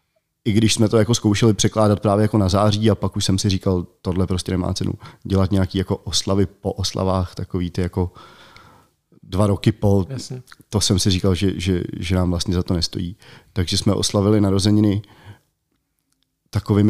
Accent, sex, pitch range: native, male, 95-115 Hz